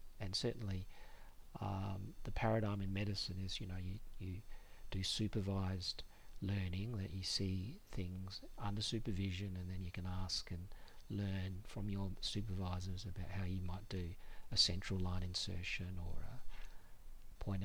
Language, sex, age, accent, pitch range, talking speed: English, male, 50-69, Australian, 95-110 Hz, 145 wpm